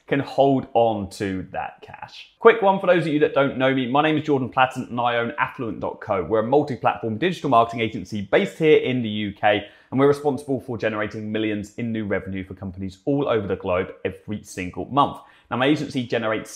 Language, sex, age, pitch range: English, male, 20-39, 105-150 Hz